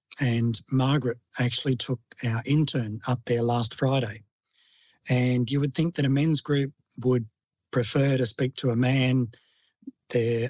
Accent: Australian